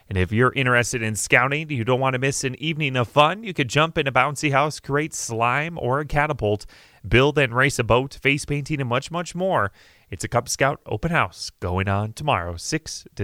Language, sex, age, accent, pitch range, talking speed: English, male, 30-49, American, 105-150 Hz, 220 wpm